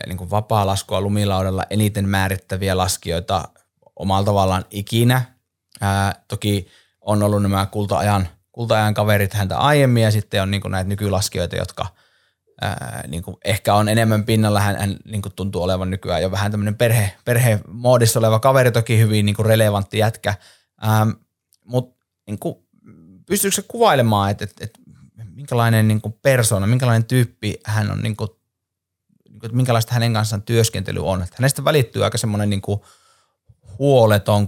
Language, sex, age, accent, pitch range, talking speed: Finnish, male, 20-39, native, 100-115 Hz, 140 wpm